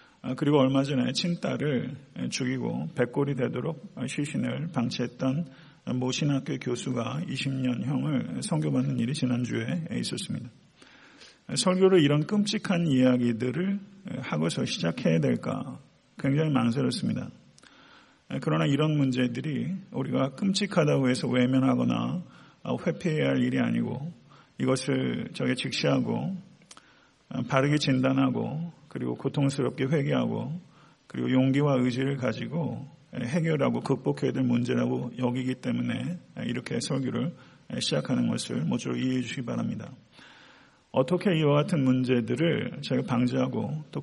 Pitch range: 125-160 Hz